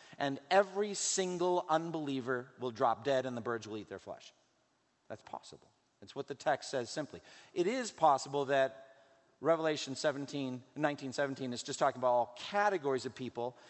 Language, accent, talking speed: English, American, 160 wpm